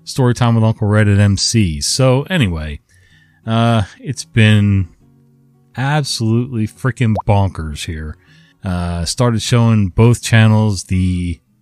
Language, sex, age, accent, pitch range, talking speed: English, male, 40-59, American, 90-120 Hz, 110 wpm